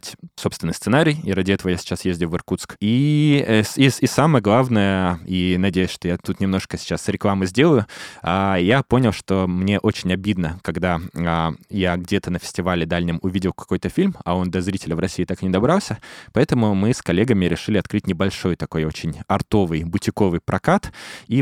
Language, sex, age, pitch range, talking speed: Russian, male, 20-39, 90-105 Hz, 175 wpm